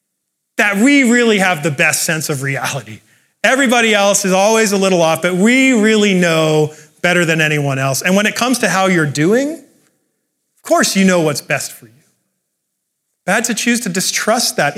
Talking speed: 190 wpm